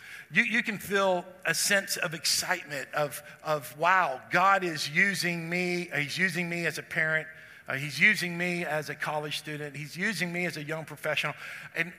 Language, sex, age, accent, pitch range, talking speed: English, male, 50-69, American, 150-185 Hz, 185 wpm